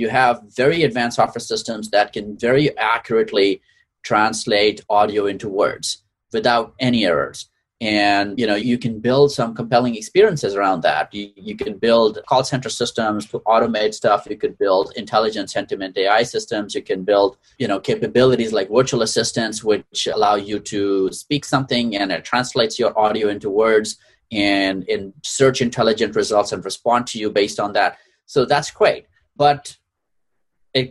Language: English